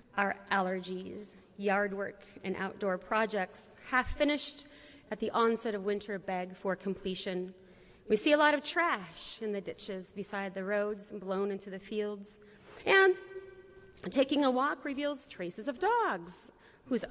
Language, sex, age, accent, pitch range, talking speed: English, female, 30-49, American, 195-240 Hz, 145 wpm